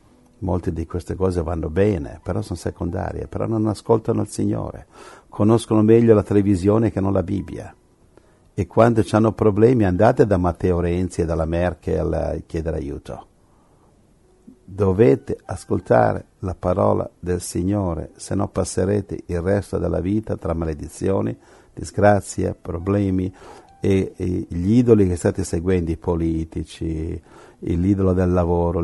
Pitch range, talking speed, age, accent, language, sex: 85-105 Hz, 135 wpm, 60-79, native, Italian, male